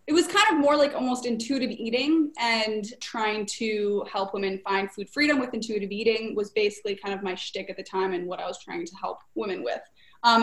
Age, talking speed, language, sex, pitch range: 20-39, 225 wpm, English, female, 205-240 Hz